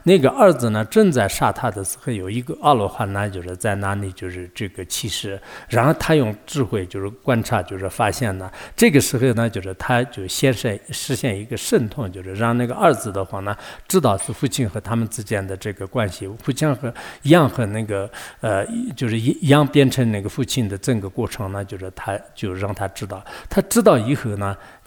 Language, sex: English, male